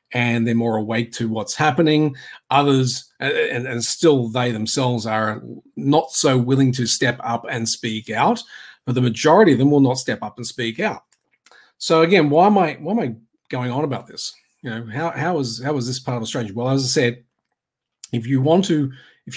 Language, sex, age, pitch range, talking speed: English, male, 40-59, 120-155 Hz, 210 wpm